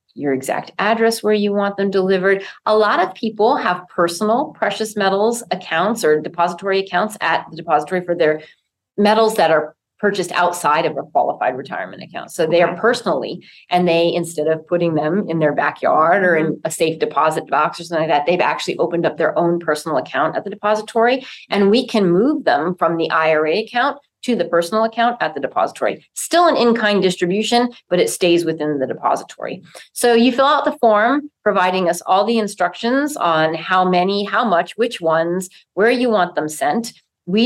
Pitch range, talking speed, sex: 165-225 Hz, 190 wpm, female